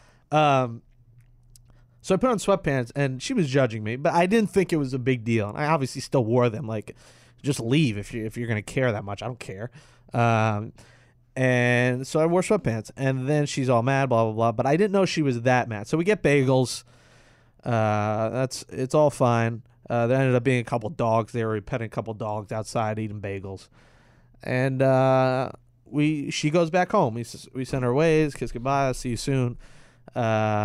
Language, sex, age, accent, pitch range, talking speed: English, male, 20-39, American, 120-145 Hz, 210 wpm